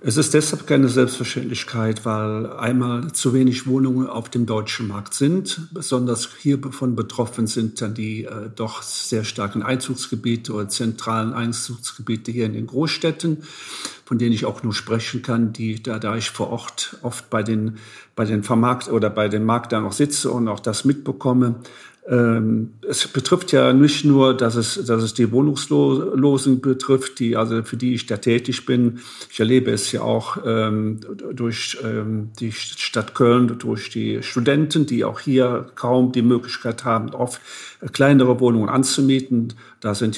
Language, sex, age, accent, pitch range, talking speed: German, male, 50-69, German, 110-130 Hz, 165 wpm